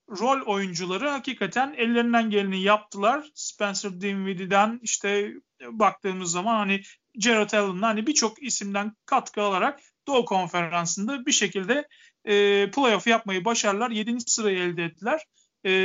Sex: male